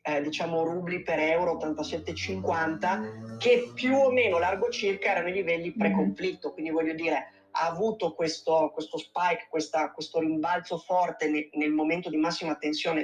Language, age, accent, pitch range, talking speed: Italian, 30-49, native, 160-190 Hz, 155 wpm